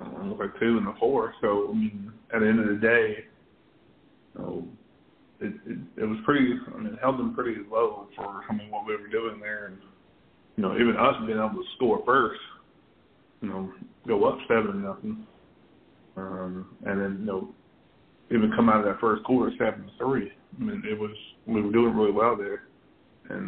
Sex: male